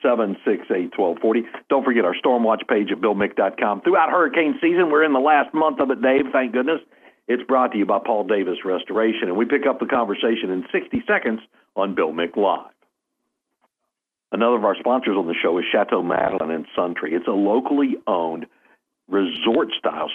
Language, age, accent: English, 60-79, American